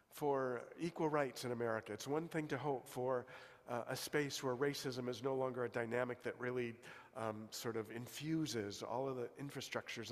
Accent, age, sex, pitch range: American, 50-69, male, 125-160 Hz